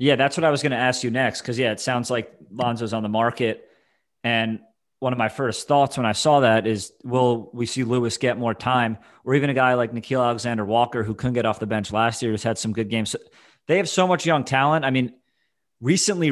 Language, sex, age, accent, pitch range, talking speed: English, male, 30-49, American, 110-135 Hz, 245 wpm